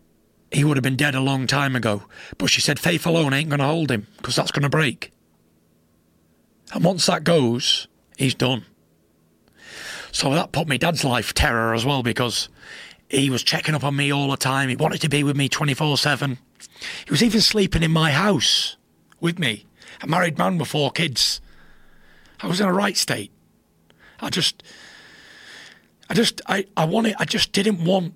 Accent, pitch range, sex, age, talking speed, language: British, 130-175 Hz, male, 30-49, 190 wpm, English